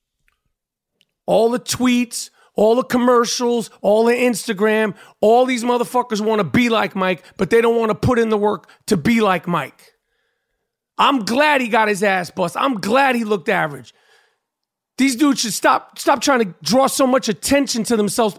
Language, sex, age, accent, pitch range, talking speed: English, male, 40-59, American, 215-255 Hz, 180 wpm